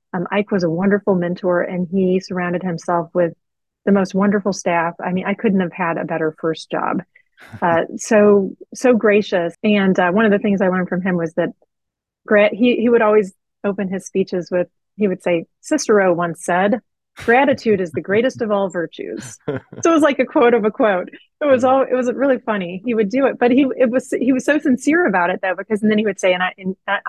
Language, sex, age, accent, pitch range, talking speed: English, female, 30-49, American, 175-220 Hz, 225 wpm